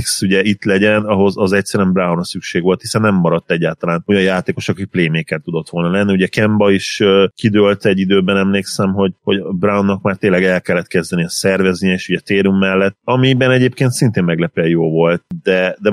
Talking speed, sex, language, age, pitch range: 190 wpm, male, Hungarian, 30-49, 90-105 Hz